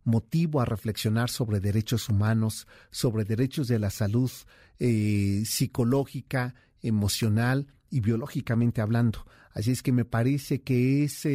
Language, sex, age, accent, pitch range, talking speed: Spanish, male, 40-59, Mexican, 115-140 Hz, 125 wpm